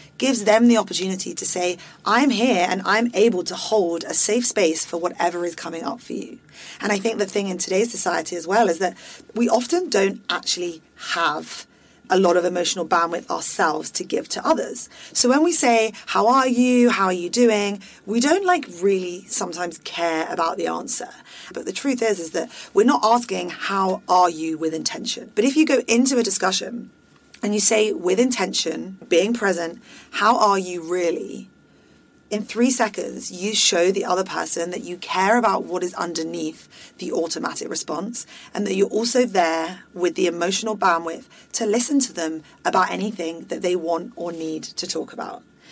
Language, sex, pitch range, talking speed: English, female, 175-225 Hz, 190 wpm